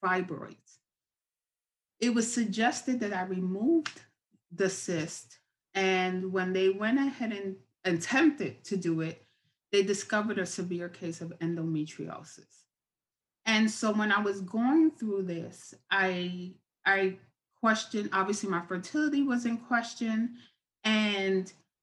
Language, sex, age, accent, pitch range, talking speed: English, female, 30-49, American, 185-230 Hz, 120 wpm